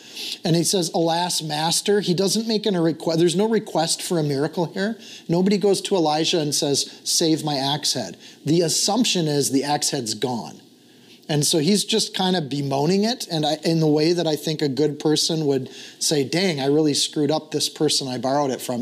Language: English